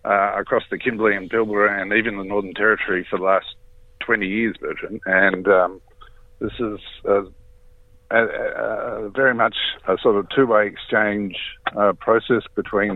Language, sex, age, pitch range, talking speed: English, male, 50-69, 90-105 Hz, 155 wpm